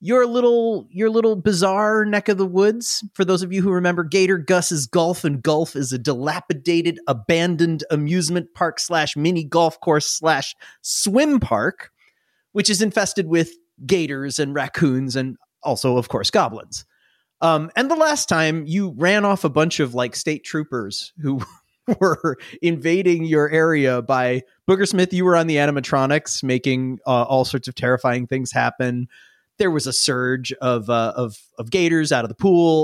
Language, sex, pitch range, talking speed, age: English, male, 130-185 Hz, 170 wpm, 30-49